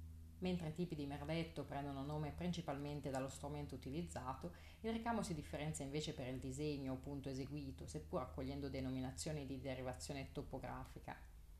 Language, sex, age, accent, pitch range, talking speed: Italian, female, 30-49, native, 130-160 Hz, 145 wpm